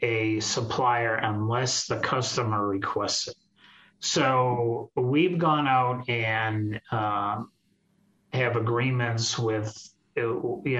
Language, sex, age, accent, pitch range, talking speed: English, male, 30-49, American, 110-135 Hz, 95 wpm